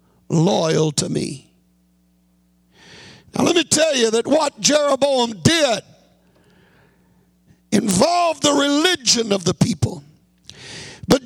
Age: 50-69